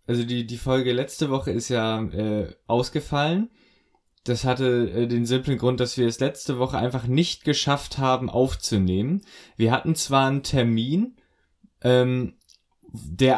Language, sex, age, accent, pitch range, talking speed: German, male, 20-39, German, 105-130 Hz, 150 wpm